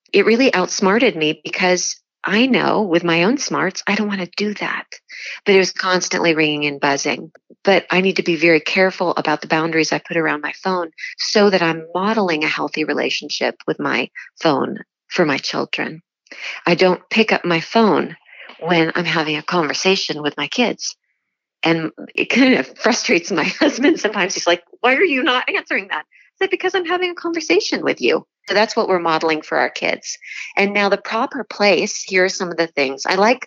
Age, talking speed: 40-59, 200 wpm